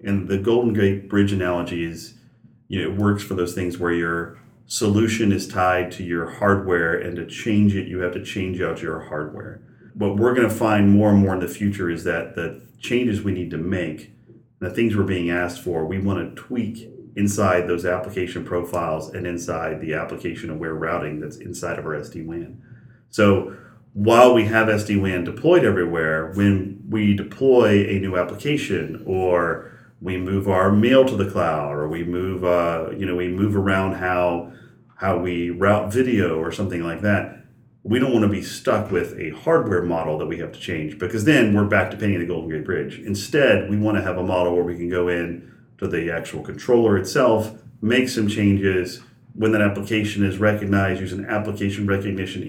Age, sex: 30-49, male